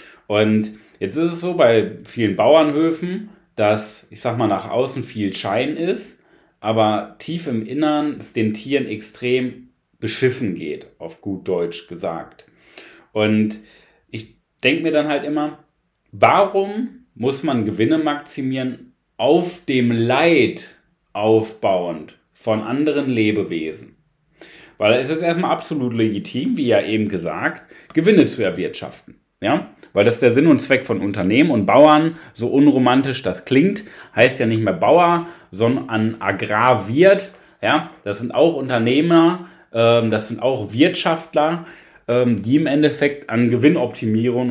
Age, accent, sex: 30-49, German, male